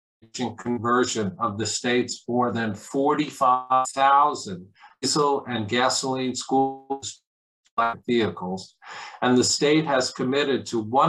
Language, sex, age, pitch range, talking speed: English, male, 50-69, 115-135 Hz, 95 wpm